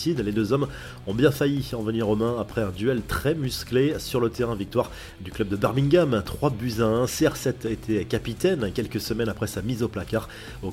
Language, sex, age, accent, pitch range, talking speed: French, male, 30-49, French, 110-135 Hz, 215 wpm